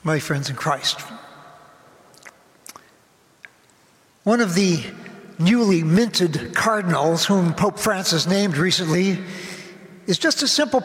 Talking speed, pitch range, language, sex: 105 wpm, 175-235 Hz, English, male